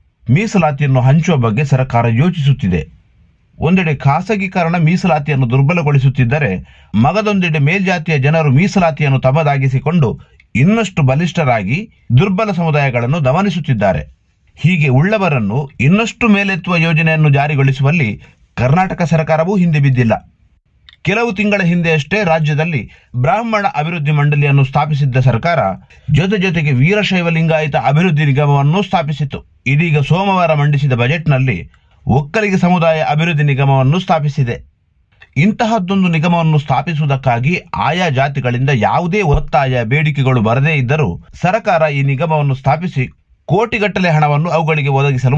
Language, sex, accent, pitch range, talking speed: Kannada, male, native, 135-170 Hz, 95 wpm